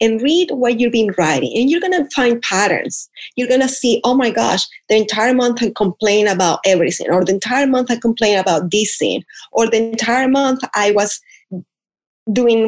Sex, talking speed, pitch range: female, 190 wpm, 190-250 Hz